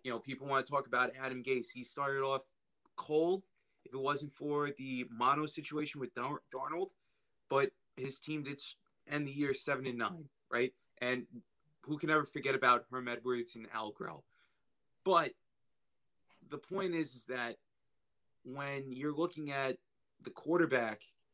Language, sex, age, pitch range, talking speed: English, male, 30-49, 125-150 Hz, 150 wpm